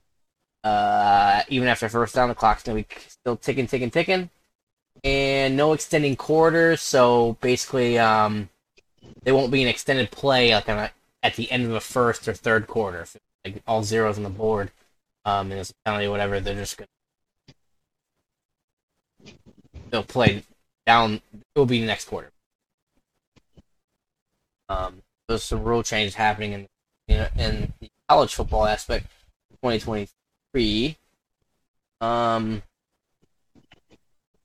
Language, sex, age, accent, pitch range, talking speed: English, male, 10-29, American, 105-125 Hz, 145 wpm